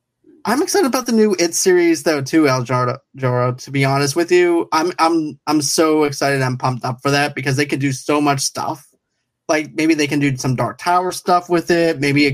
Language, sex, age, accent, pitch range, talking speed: English, male, 20-39, American, 135-160 Hz, 225 wpm